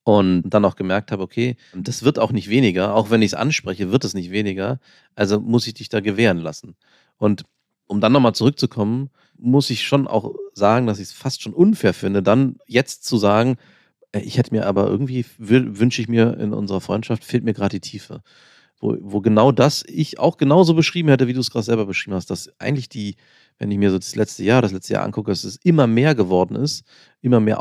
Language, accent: German, German